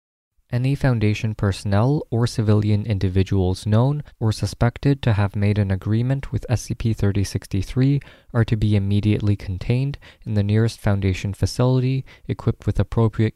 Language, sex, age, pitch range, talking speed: English, male, 20-39, 100-120 Hz, 130 wpm